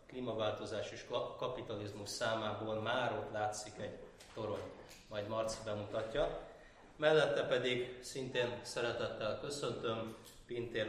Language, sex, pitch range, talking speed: Hungarian, male, 110-135 Hz, 100 wpm